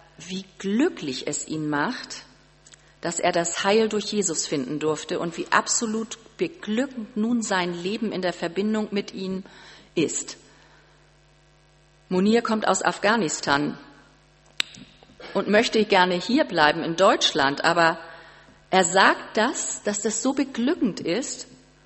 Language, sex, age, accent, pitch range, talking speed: German, female, 40-59, German, 165-215 Hz, 125 wpm